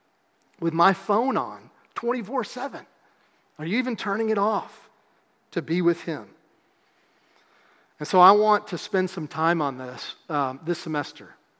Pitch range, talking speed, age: 155-190 Hz, 145 wpm, 40-59